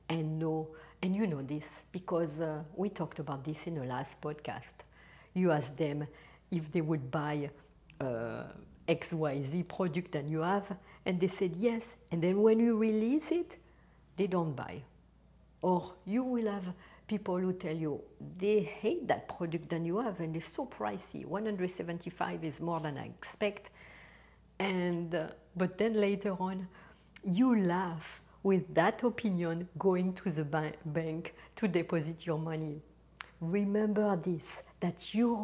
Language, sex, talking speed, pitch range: English, female, 150 wpm, 160-215 Hz